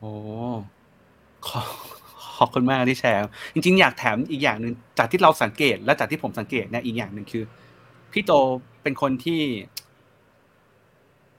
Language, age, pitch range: Thai, 30-49, 115-145 Hz